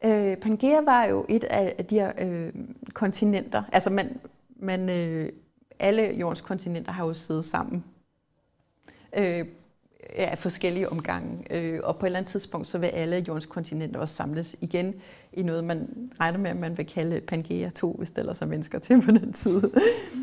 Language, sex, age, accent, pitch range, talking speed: Danish, female, 30-49, native, 170-220 Hz, 180 wpm